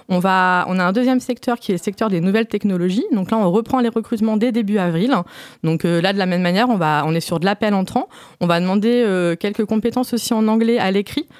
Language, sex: French, female